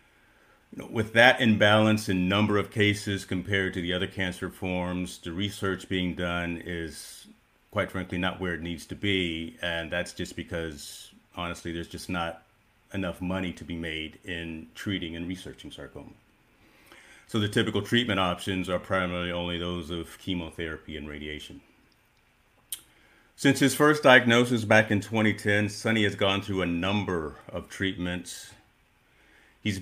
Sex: male